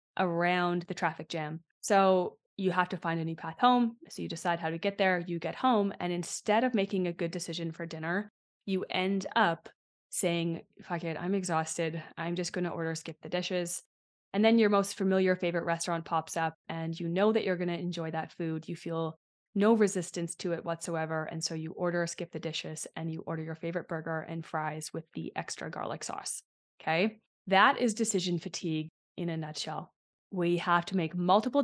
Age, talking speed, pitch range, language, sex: 20-39, 205 wpm, 165-195 Hz, English, female